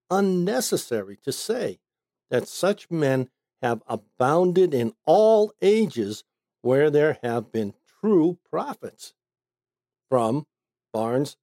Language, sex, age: English, male, 60-79